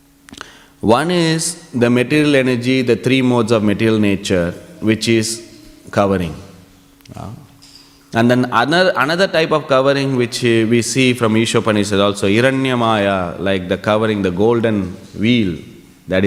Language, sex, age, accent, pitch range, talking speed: English, male, 30-49, Indian, 105-140 Hz, 135 wpm